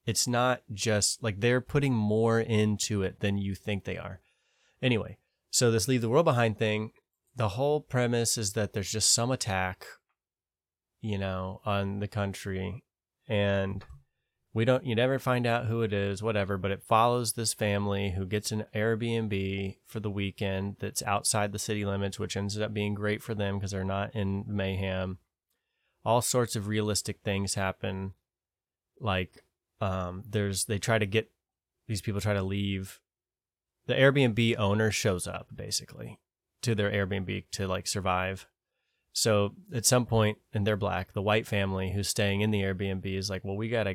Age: 20-39